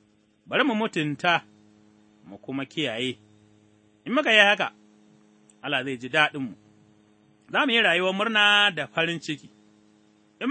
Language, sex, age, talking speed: English, male, 30-49, 110 wpm